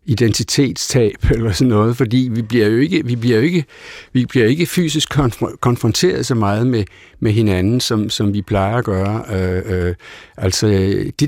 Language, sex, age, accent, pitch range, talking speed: Danish, male, 60-79, native, 100-130 Hz, 170 wpm